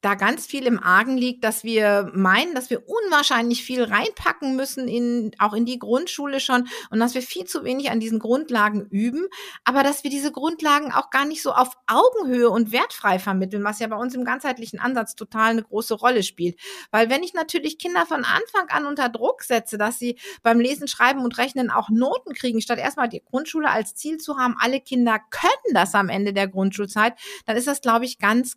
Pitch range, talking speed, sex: 205-265 Hz, 210 wpm, female